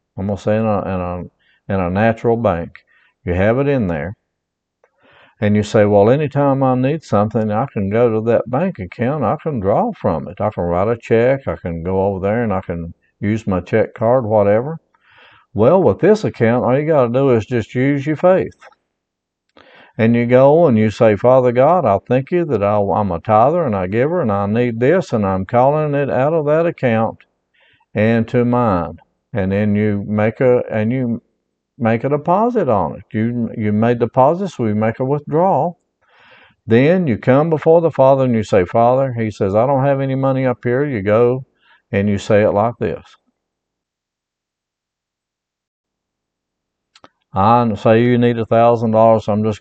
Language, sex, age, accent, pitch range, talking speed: English, male, 60-79, American, 105-130 Hz, 190 wpm